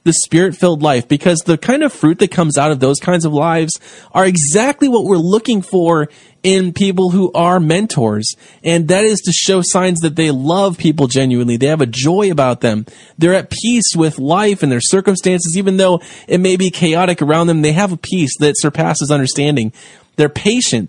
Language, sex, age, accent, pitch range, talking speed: English, male, 20-39, American, 150-195 Hz, 200 wpm